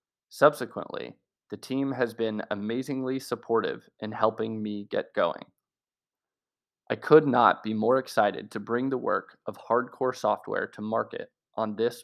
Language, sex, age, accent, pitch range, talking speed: English, male, 20-39, American, 110-130 Hz, 145 wpm